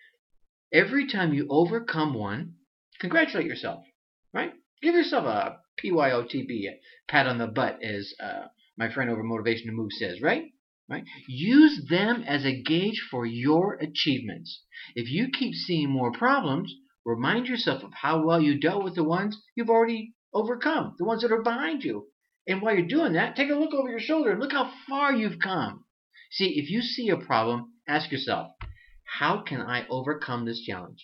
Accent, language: American, English